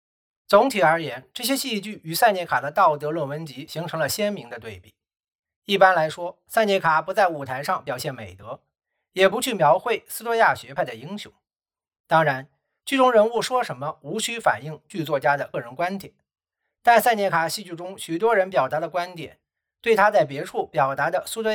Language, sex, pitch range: Chinese, male, 155-215 Hz